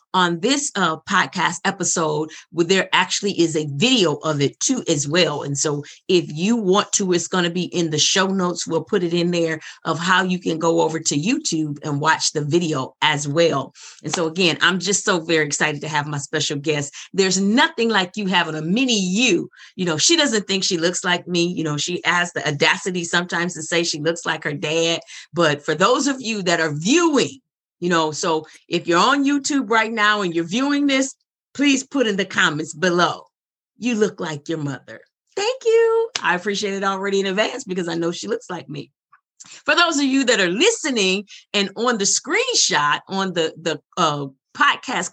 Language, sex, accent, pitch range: English, female, American, 160-215 Hz